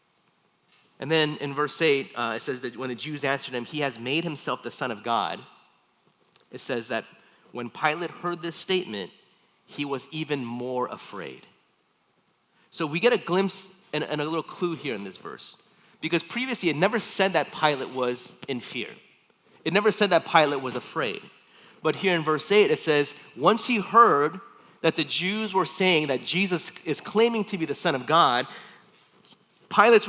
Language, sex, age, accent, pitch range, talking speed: English, male, 30-49, American, 140-185 Hz, 180 wpm